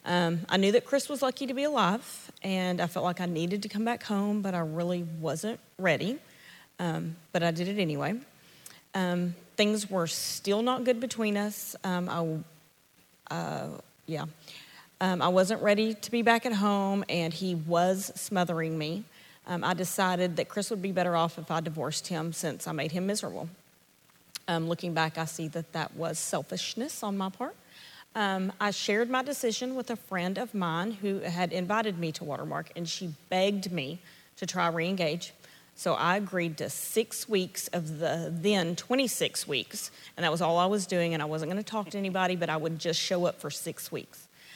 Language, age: English, 40-59